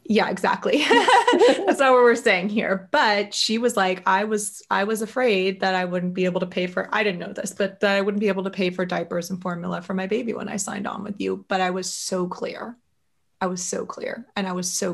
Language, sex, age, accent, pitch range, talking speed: English, female, 20-39, American, 185-210 Hz, 250 wpm